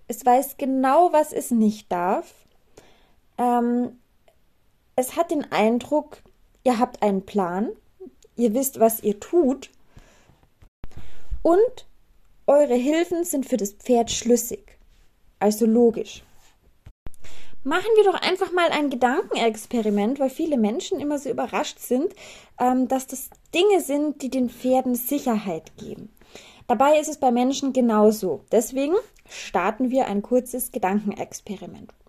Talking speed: 125 wpm